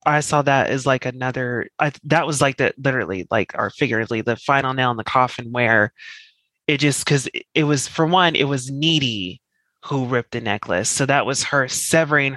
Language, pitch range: English, 125-150 Hz